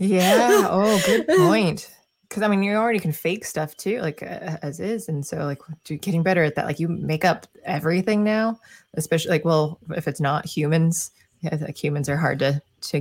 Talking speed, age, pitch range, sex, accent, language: 210 wpm, 20-39, 150-205 Hz, female, American, English